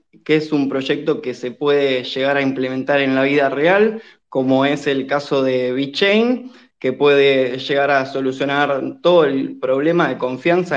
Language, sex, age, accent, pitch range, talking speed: Spanish, male, 20-39, Argentinian, 140-185 Hz, 165 wpm